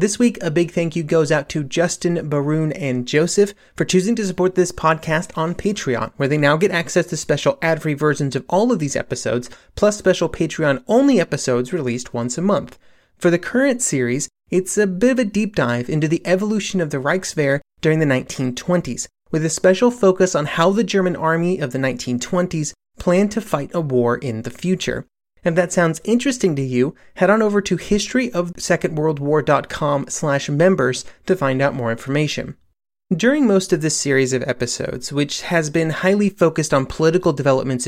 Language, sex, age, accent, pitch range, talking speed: English, male, 30-49, American, 140-185 Hz, 185 wpm